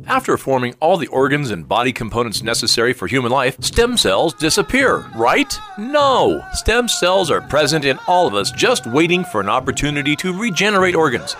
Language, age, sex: English, 40-59, male